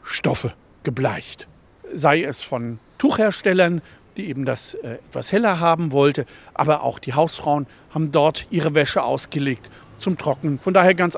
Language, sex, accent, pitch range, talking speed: German, male, German, 145-195 Hz, 150 wpm